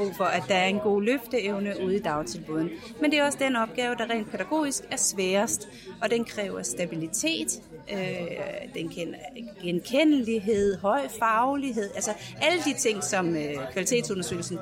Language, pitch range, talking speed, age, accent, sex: Danish, 185-250 Hz, 155 wpm, 30-49, native, female